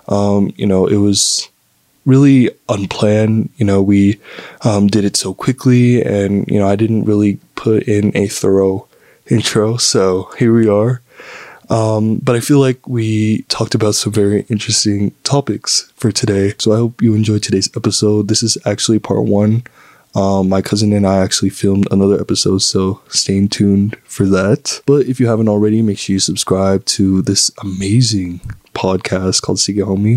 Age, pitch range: 20-39, 100-125 Hz